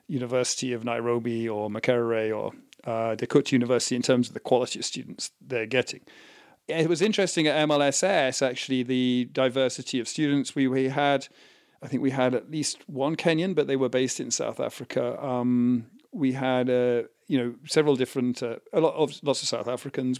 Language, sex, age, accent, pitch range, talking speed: English, male, 40-59, British, 125-150 Hz, 185 wpm